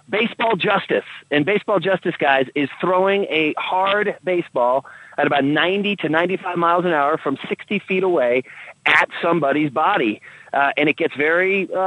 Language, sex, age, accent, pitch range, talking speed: English, male, 30-49, American, 145-200 Hz, 155 wpm